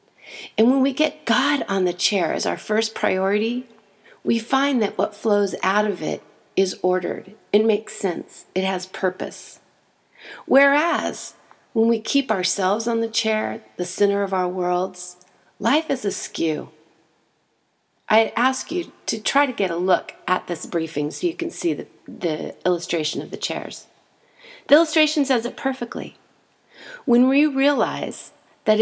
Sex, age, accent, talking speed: female, 40-59, American, 155 wpm